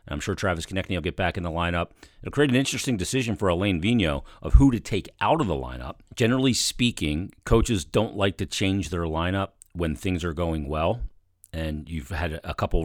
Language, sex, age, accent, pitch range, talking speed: English, male, 40-59, American, 80-100 Hz, 210 wpm